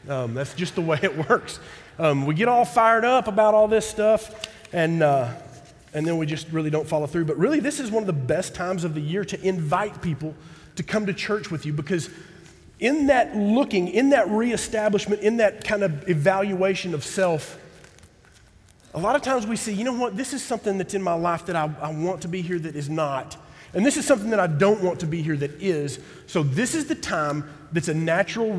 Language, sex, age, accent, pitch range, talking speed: English, male, 30-49, American, 145-210 Hz, 230 wpm